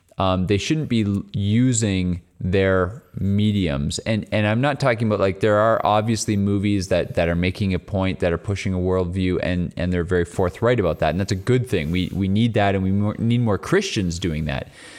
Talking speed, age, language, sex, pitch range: 210 wpm, 20-39, English, male, 90-110 Hz